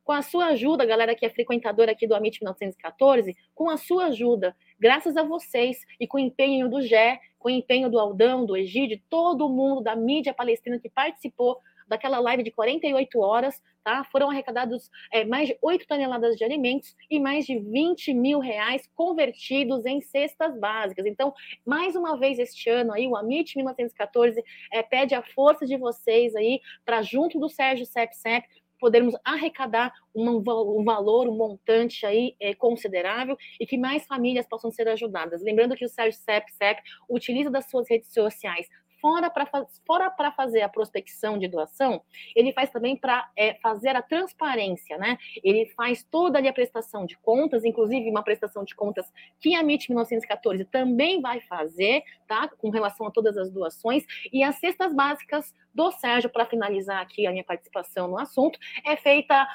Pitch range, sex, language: 225-275 Hz, female, Portuguese